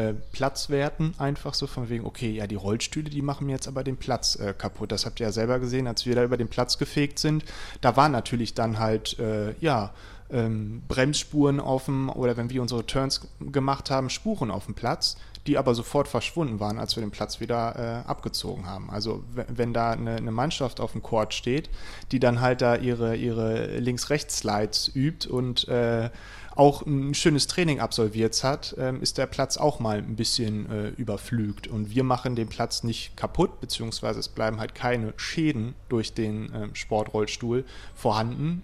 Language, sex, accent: German, male, German